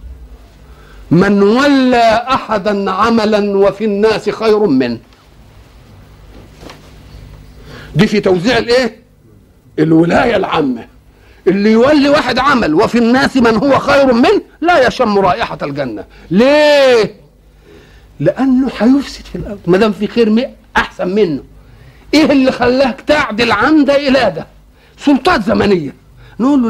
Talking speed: 110 wpm